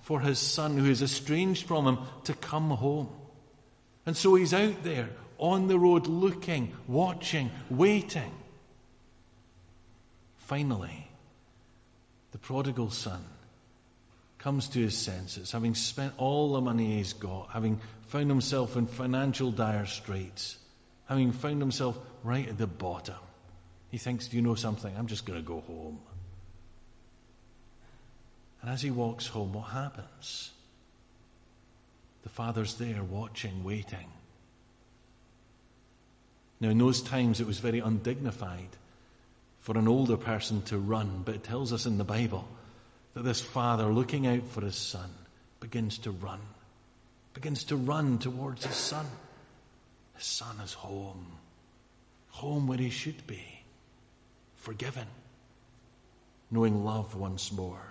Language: English